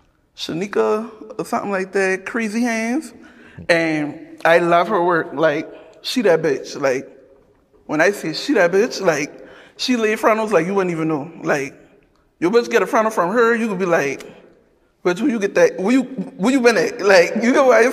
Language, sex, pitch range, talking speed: English, male, 185-250 Hz, 205 wpm